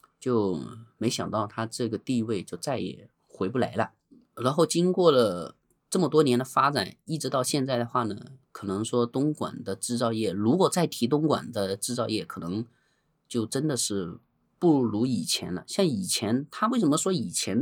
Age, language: 20-39, Chinese